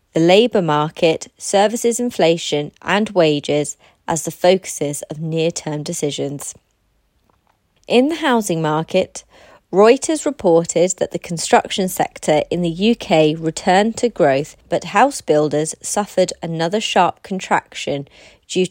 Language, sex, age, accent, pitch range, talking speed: English, female, 30-49, British, 155-215 Hz, 120 wpm